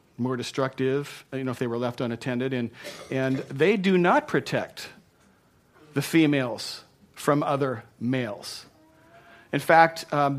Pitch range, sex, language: 135-155 Hz, male, English